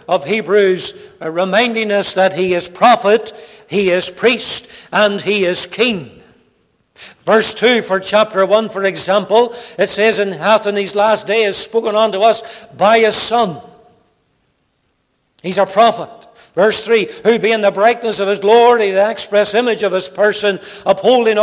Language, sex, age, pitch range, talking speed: English, male, 60-79, 195-230 Hz, 155 wpm